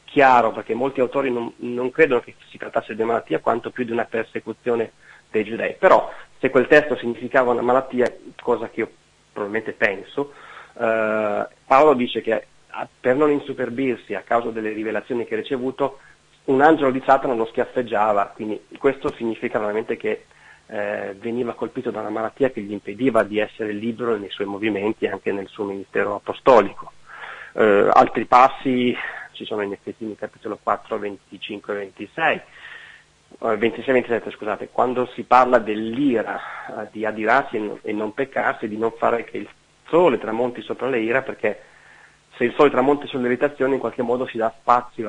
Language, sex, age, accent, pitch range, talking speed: Italian, male, 30-49, native, 110-125 Hz, 165 wpm